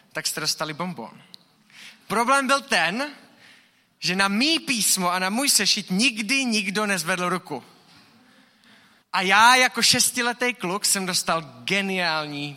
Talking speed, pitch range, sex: 130 wpm, 185-240 Hz, male